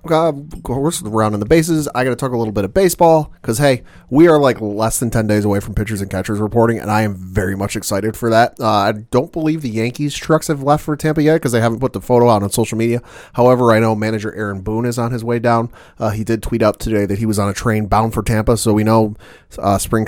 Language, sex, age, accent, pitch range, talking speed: English, male, 30-49, American, 105-130 Hz, 270 wpm